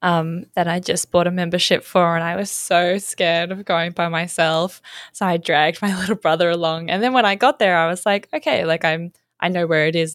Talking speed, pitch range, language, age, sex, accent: 250 wpm, 165-200 Hz, English, 10-29, female, Australian